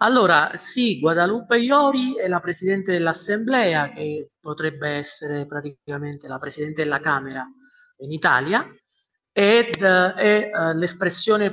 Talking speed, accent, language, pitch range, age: 110 wpm, native, Italian, 155-215 Hz, 40-59